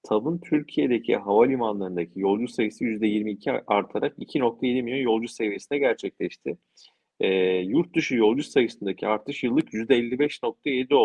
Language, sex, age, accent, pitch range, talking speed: Turkish, male, 40-59, native, 100-125 Hz, 110 wpm